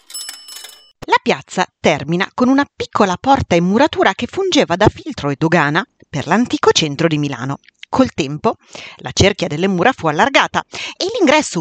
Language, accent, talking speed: Italian, native, 155 wpm